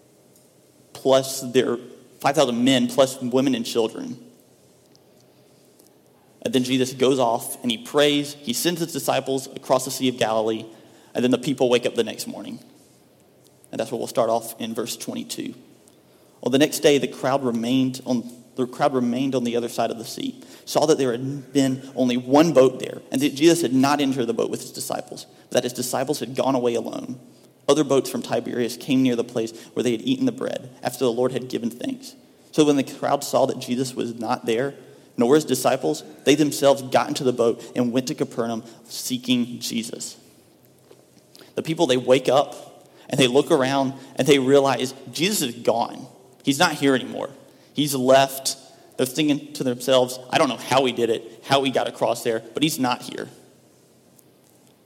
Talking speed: 190 wpm